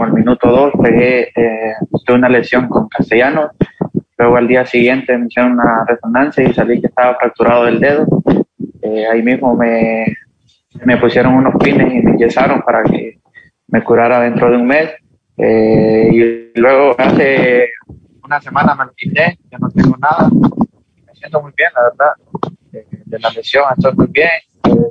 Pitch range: 115-130 Hz